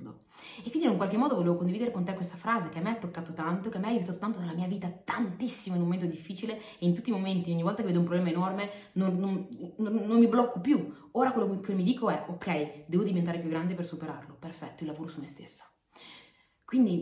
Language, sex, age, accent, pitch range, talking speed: Italian, female, 30-49, native, 170-230 Hz, 245 wpm